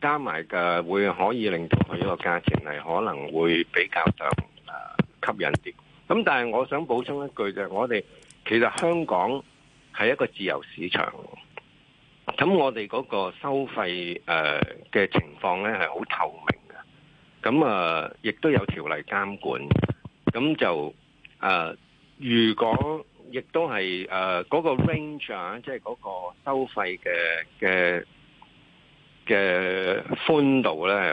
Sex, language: male, Chinese